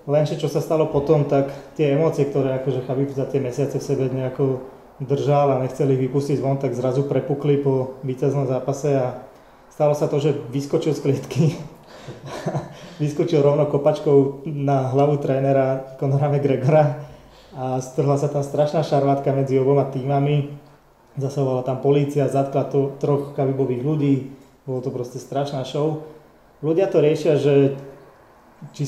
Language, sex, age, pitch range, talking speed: Slovak, male, 20-39, 130-145 Hz, 150 wpm